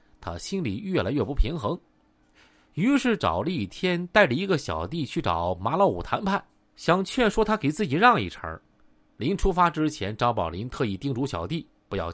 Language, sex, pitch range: Chinese, male, 125-200 Hz